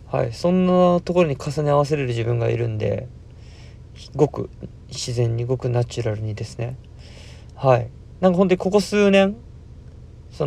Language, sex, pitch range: Japanese, male, 120-145 Hz